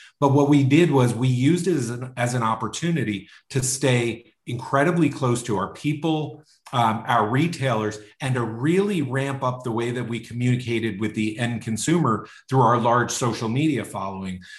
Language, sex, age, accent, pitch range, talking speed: English, male, 40-59, American, 110-140 Hz, 175 wpm